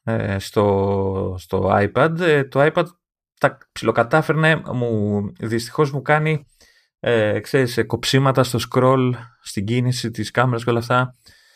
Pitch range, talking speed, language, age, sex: 105-145 Hz, 120 wpm, Greek, 20-39, male